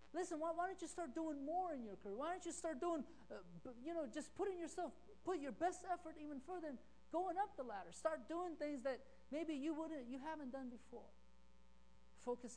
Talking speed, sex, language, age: 210 wpm, male, English, 40-59